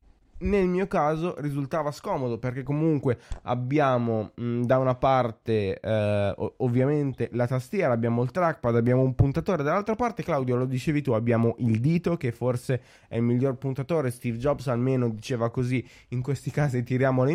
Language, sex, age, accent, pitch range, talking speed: Italian, male, 20-39, native, 115-140 Hz, 155 wpm